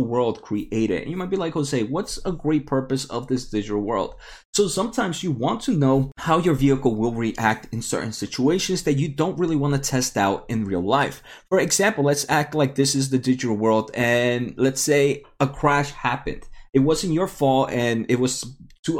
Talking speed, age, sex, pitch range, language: 205 wpm, 20-39, male, 115-150 Hz, English